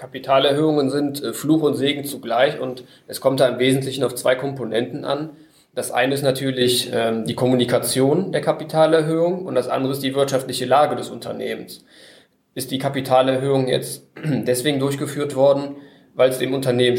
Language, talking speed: German, 155 wpm